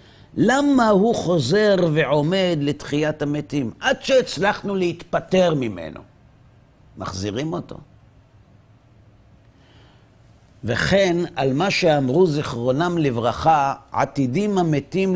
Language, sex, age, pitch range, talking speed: Hebrew, male, 50-69, 115-165 Hz, 80 wpm